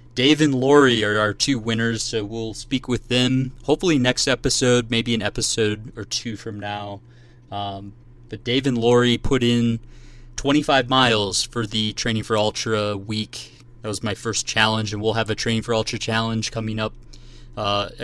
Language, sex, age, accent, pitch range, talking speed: English, male, 20-39, American, 105-120 Hz, 175 wpm